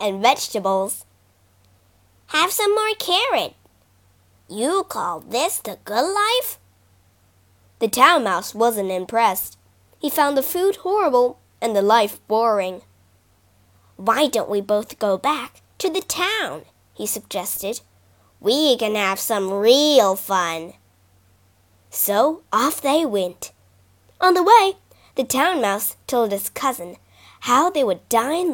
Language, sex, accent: Chinese, female, American